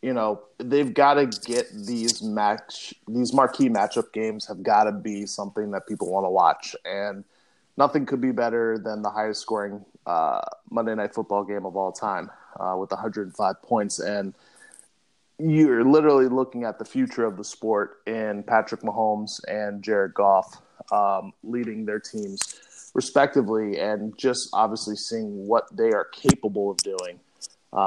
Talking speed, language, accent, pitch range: 160 wpm, English, American, 105-125 Hz